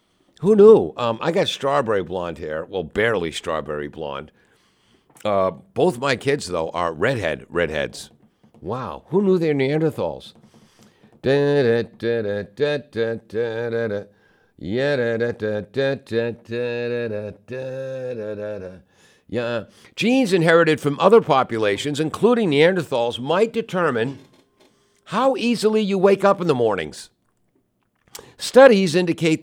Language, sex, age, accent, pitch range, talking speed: English, male, 60-79, American, 115-155 Hz, 90 wpm